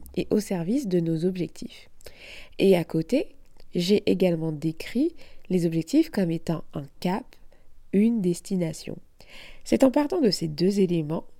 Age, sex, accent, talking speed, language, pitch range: 20-39, female, French, 140 wpm, French, 165-225 Hz